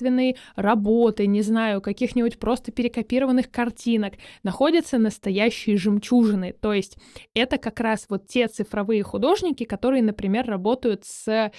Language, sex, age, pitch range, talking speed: Russian, female, 20-39, 210-250 Hz, 120 wpm